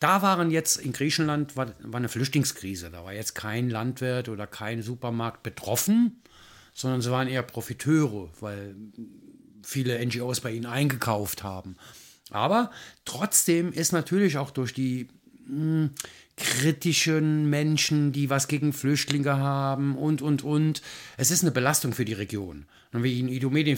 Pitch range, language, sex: 120-165 Hz, German, male